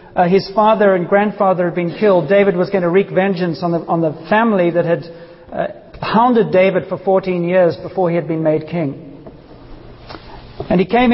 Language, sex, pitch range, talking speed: English, male, 160-195 Hz, 195 wpm